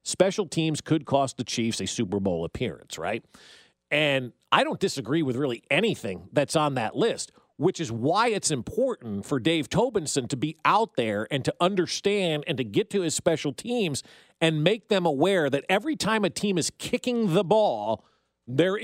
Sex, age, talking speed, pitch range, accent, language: male, 40-59, 185 wpm, 130-175 Hz, American, English